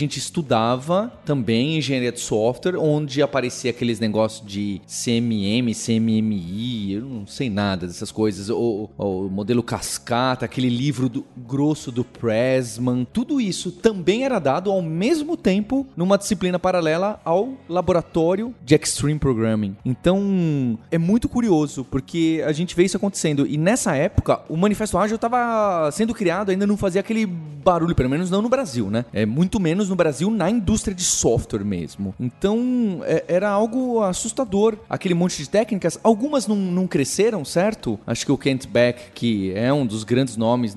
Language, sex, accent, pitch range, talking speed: Portuguese, male, Brazilian, 120-190 Hz, 160 wpm